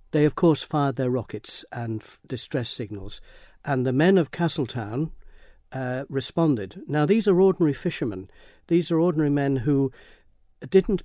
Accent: British